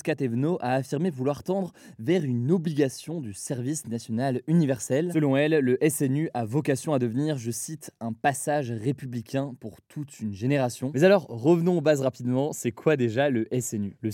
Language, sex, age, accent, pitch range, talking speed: French, male, 20-39, French, 120-155 Hz, 175 wpm